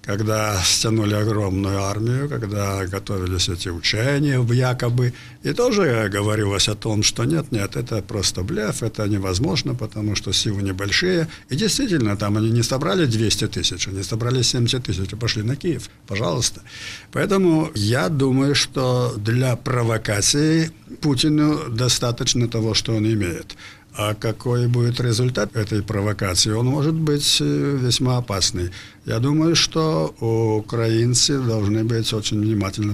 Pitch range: 105-140 Hz